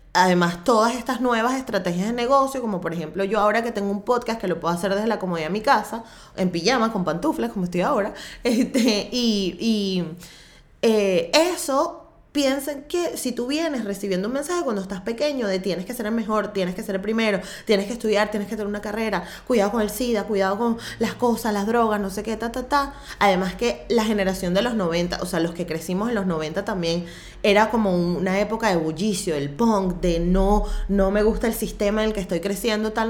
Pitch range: 195-235 Hz